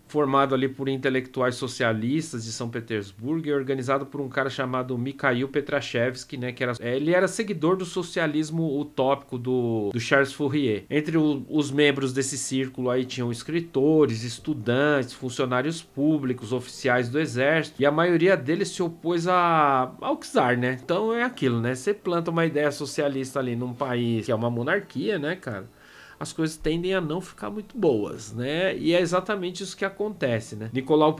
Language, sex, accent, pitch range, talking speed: Portuguese, male, Brazilian, 125-155 Hz, 170 wpm